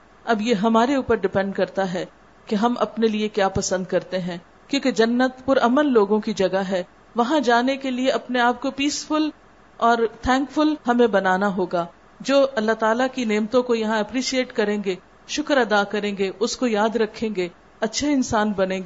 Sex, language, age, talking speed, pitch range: female, Urdu, 50-69, 190 wpm, 200-250 Hz